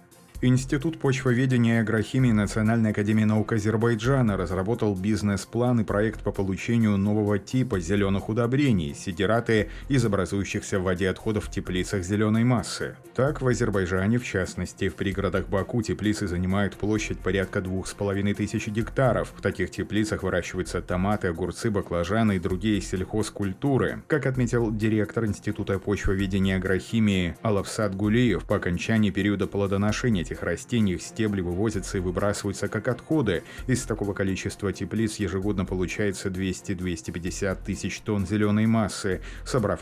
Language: Russian